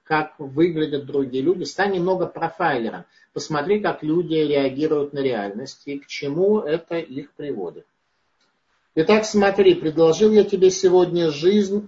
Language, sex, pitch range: Russian, male, 130-175 Hz